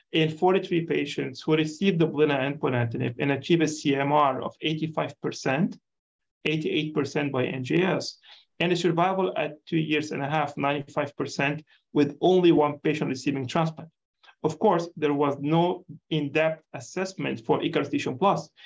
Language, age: English, 40-59